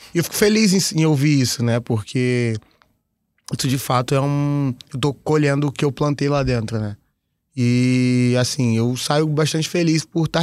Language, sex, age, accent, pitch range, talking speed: Portuguese, male, 20-39, Brazilian, 130-155 Hz, 185 wpm